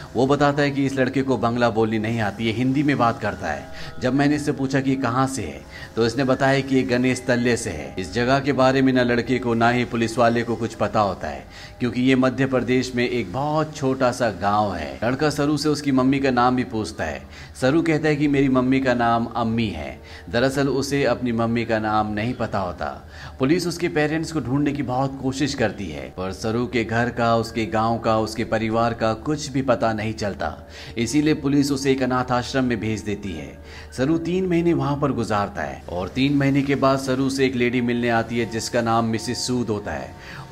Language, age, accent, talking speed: Hindi, 30-49, native, 165 wpm